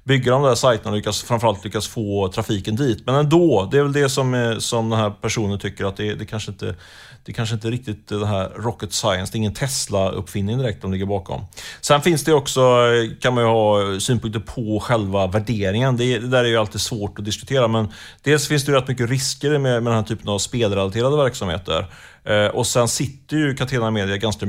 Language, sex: Swedish, male